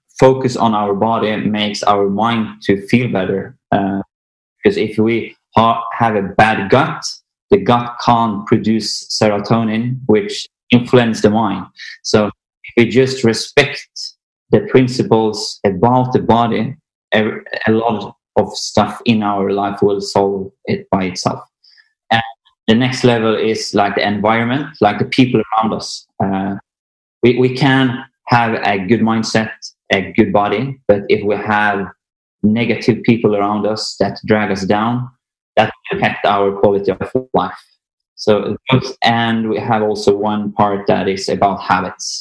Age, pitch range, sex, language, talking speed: 20-39, 105-120 Hz, male, Swedish, 150 wpm